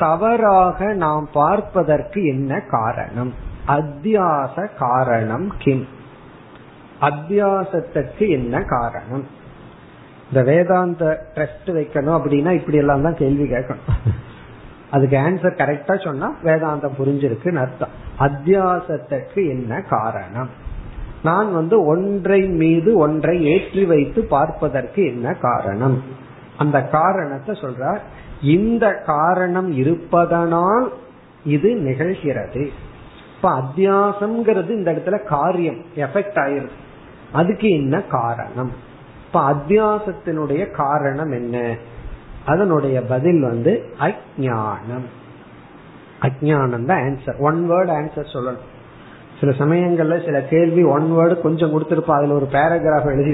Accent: native